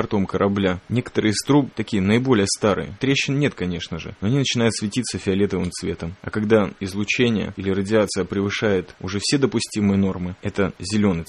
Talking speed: 150 wpm